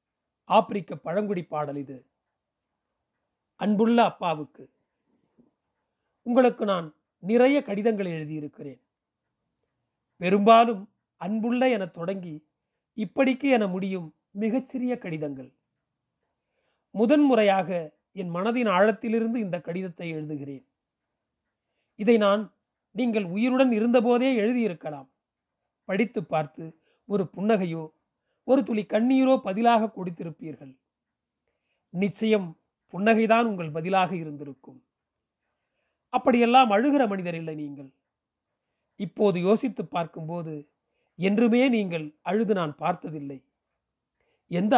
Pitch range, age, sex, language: 165-230 Hz, 30-49, male, Tamil